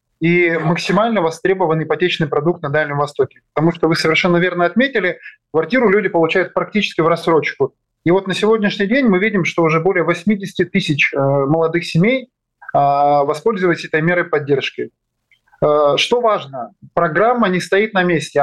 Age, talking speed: 20-39, 145 wpm